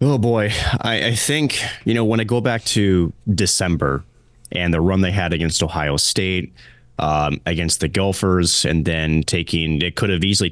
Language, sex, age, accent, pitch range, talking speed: English, male, 30-49, American, 80-105 Hz, 185 wpm